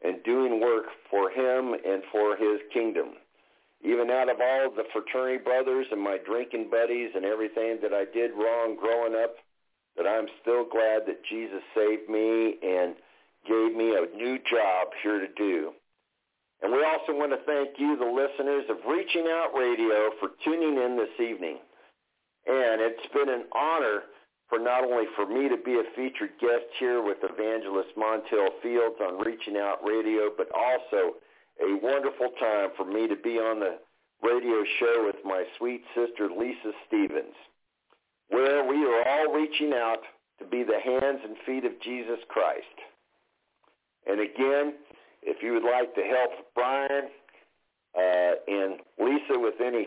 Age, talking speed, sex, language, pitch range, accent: 50-69, 160 wpm, male, English, 110-140 Hz, American